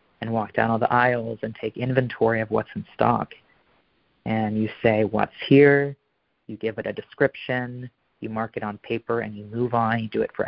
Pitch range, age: 110-125 Hz, 30-49